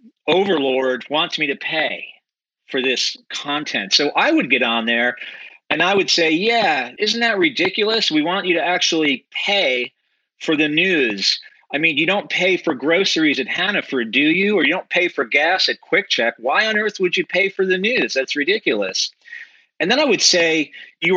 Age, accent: 40-59, American